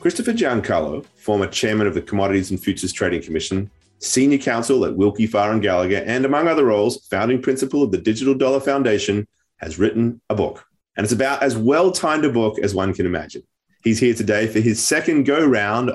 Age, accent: 30-49, Australian